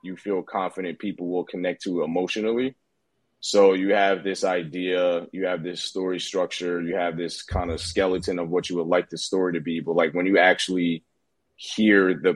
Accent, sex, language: American, male, English